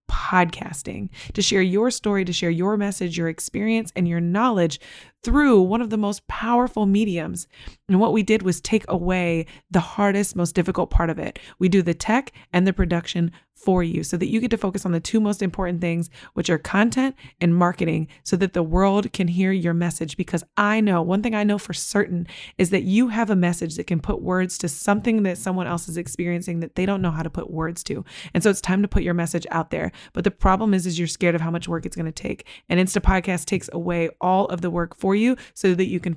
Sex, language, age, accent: female, English, 20-39, American